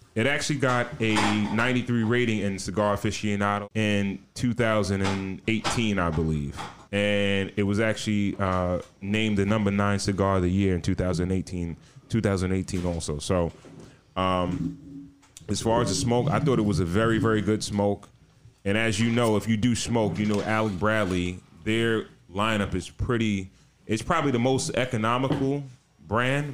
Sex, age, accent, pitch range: male, 30-49, American, 95-115 Hz